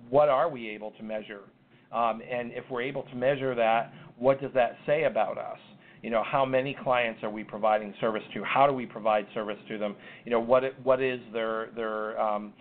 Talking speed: 215 wpm